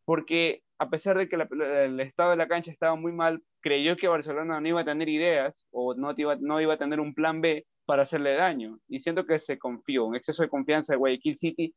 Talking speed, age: 240 wpm, 20-39